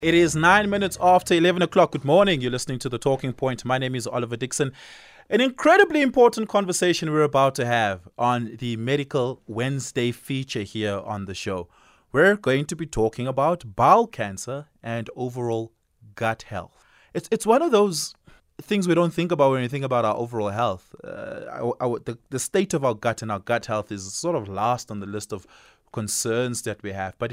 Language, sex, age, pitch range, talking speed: English, male, 20-39, 100-135 Hz, 200 wpm